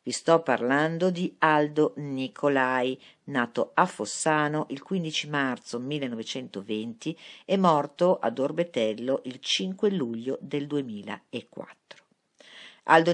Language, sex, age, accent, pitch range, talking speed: Italian, female, 50-69, native, 120-165 Hz, 105 wpm